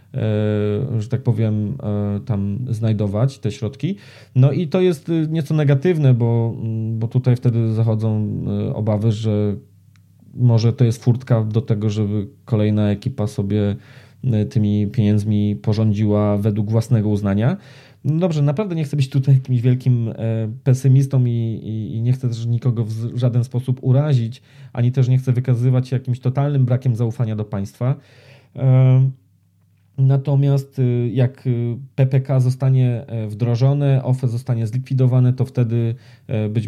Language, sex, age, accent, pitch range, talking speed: Polish, male, 20-39, native, 110-130 Hz, 130 wpm